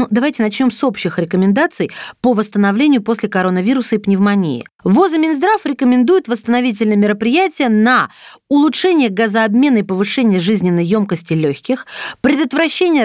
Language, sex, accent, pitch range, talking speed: Russian, female, native, 210-285 Hz, 115 wpm